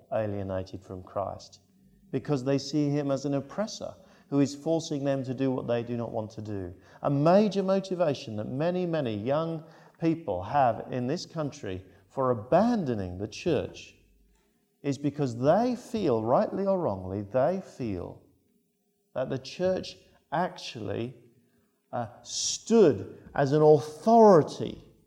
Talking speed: 135 wpm